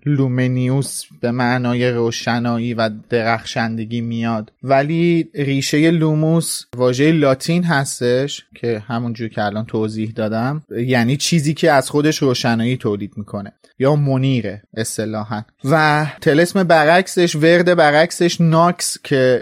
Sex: male